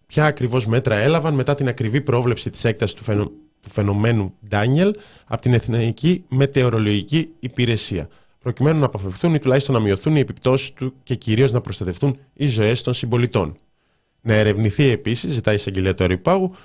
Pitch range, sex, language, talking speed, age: 105-140 Hz, male, Greek, 165 wpm, 20-39